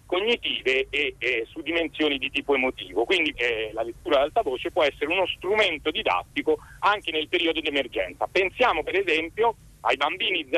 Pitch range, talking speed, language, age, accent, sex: 155-250 Hz, 170 wpm, Italian, 40-59, native, male